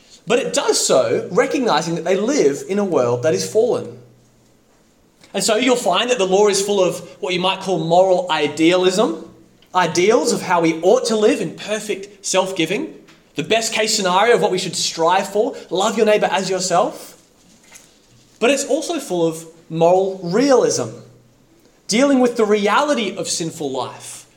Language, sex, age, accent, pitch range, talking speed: English, male, 20-39, Australian, 170-220 Hz, 170 wpm